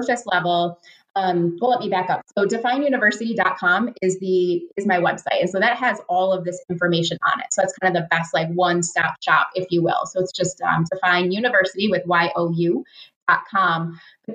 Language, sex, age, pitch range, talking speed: English, female, 20-39, 180-225 Hz, 190 wpm